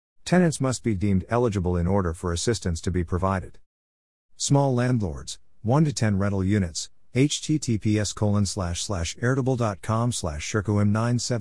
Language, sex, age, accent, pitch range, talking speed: English, male, 50-69, American, 90-110 Hz, 130 wpm